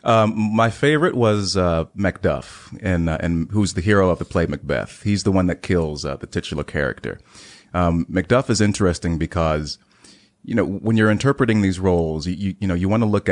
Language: English